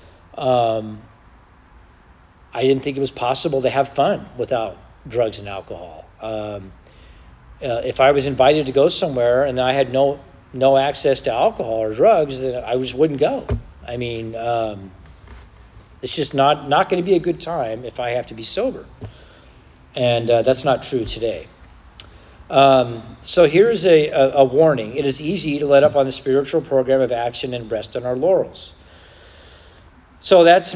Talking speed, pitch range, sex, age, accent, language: 175 wpm, 115-140 Hz, male, 40-59, American, English